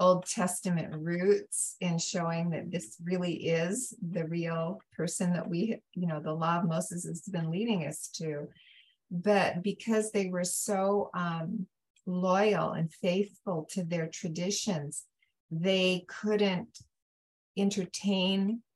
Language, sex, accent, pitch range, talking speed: English, female, American, 165-195 Hz, 130 wpm